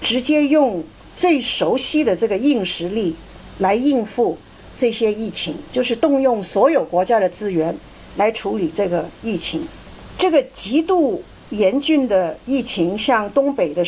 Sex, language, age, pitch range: female, Chinese, 50-69, 185-275 Hz